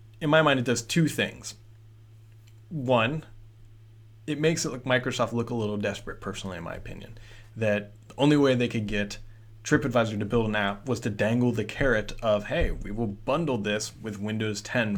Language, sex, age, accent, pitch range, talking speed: English, male, 20-39, American, 105-125 Hz, 190 wpm